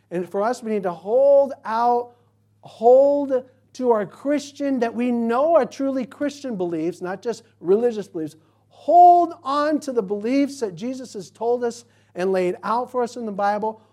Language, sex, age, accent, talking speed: English, male, 50-69, American, 175 wpm